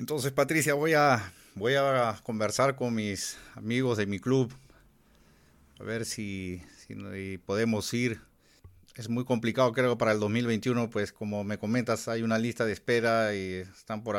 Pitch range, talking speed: 100-115 Hz, 155 wpm